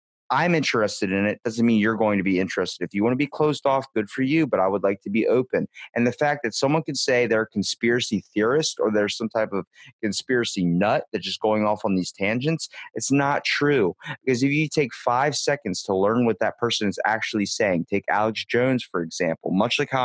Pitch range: 105-130 Hz